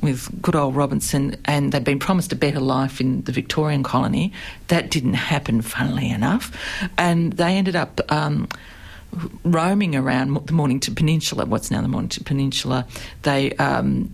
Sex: female